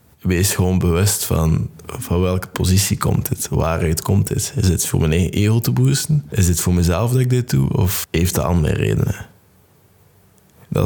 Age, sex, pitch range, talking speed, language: 20-39, male, 90-105 Hz, 190 wpm, Dutch